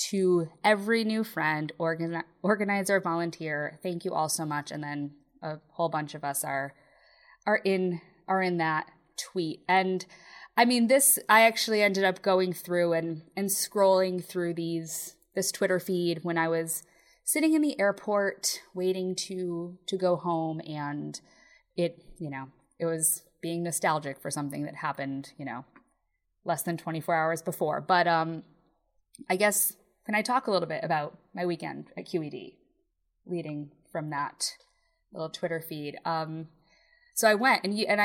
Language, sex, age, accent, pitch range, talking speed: English, female, 20-39, American, 165-210 Hz, 160 wpm